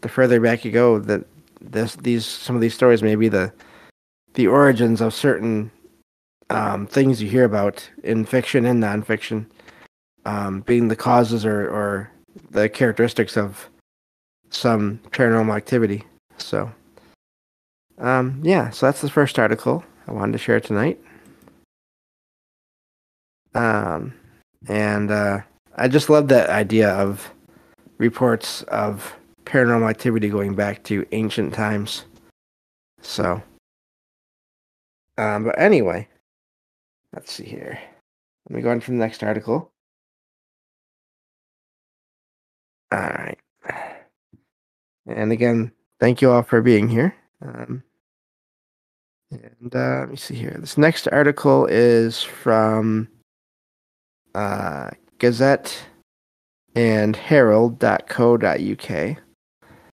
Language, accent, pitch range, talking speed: English, American, 105-120 Hz, 110 wpm